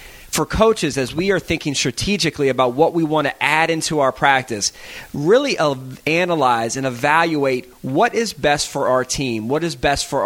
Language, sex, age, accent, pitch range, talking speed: English, male, 30-49, American, 125-165 Hz, 175 wpm